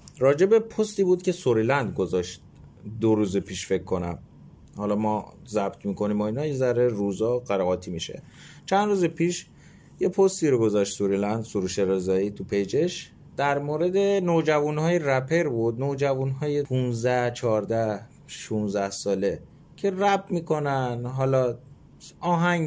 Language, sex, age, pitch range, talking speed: Persian, male, 30-49, 110-160 Hz, 125 wpm